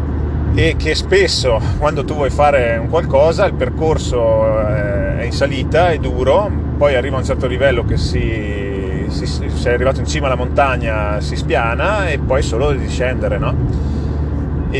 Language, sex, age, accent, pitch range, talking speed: Italian, male, 30-49, native, 105-135 Hz, 160 wpm